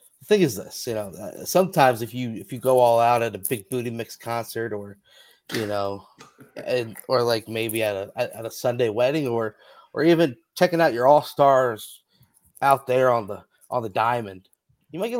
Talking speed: 200 wpm